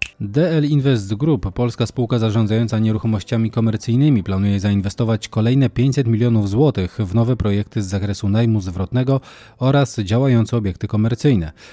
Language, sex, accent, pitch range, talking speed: Polish, male, native, 100-125 Hz, 130 wpm